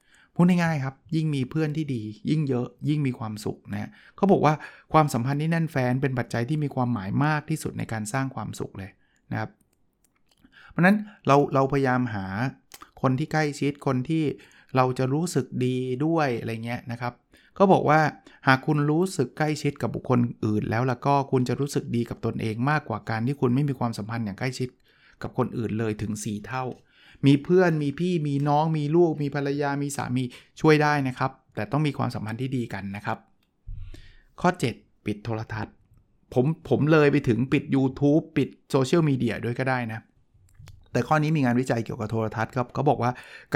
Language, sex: Thai, male